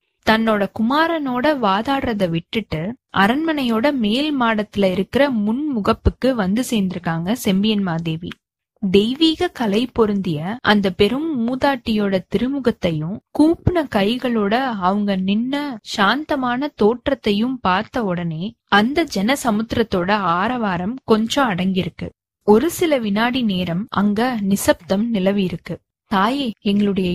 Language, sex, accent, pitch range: Tamil, female, native, 195-255 Hz